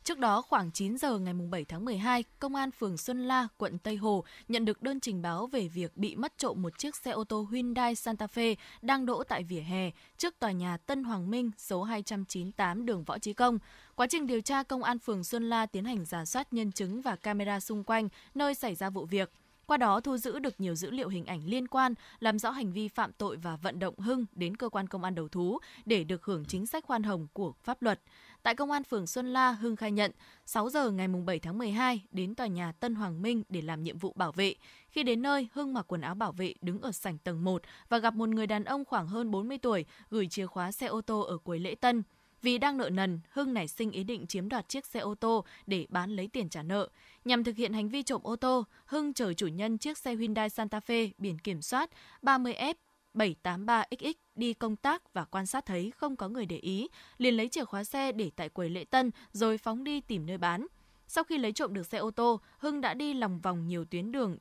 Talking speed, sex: 245 wpm, female